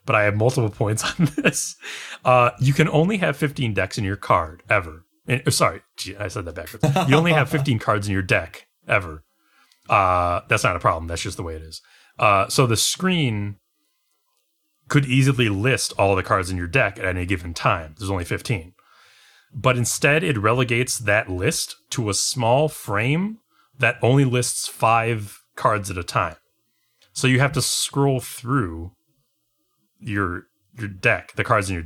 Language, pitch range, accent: English, 95-130 Hz, American